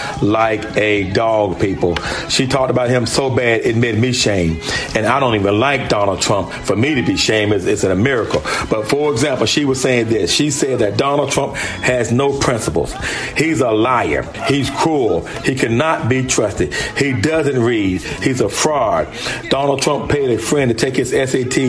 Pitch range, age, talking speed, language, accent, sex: 120-155 Hz, 40-59, 195 wpm, English, American, male